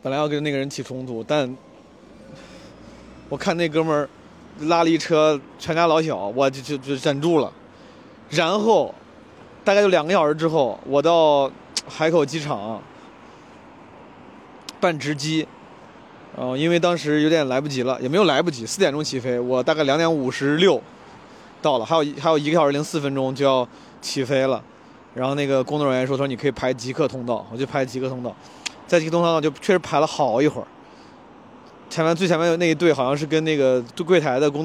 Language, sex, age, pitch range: Chinese, male, 20-39, 130-170 Hz